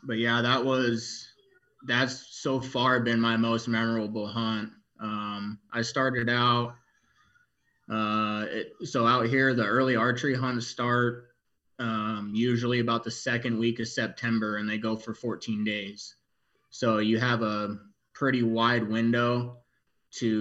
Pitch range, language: 110-125 Hz, English